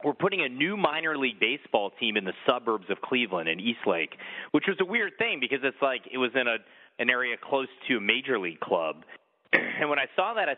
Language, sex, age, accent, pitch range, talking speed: English, male, 30-49, American, 100-135 Hz, 235 wpm